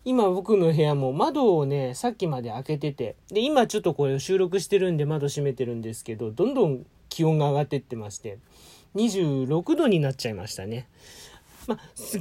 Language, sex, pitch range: Japanese, male, 140-215 Hz